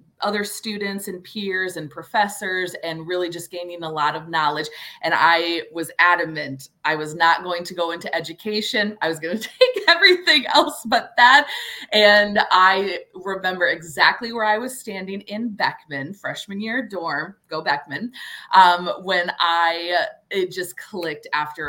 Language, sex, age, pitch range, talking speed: English, female, 20-39, 160-200 Hz, 155 wpm